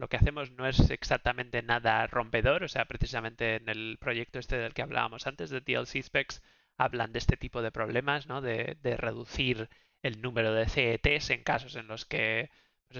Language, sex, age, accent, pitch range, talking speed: Spanish, male, 20-39, Spanish, 115-125 Hz, 195 wpm